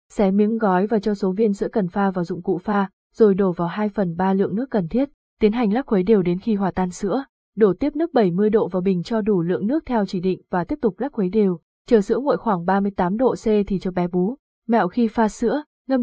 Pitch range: 195-235 Hz